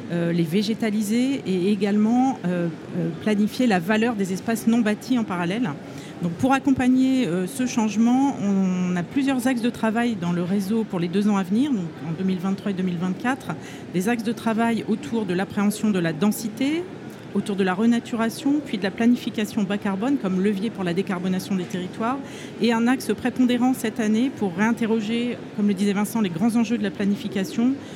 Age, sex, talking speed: 40-59, female, 180 wpm